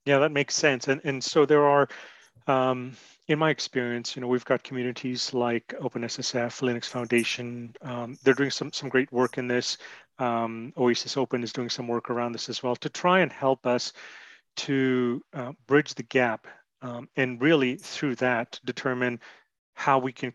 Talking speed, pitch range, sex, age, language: 180 wpm, 120-135 Hz, male, 30-49, English